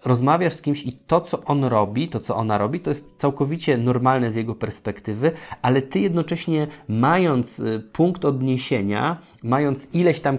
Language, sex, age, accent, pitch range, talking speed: Polish, male, 20-39, native, 110-140 Hz, 160 wpm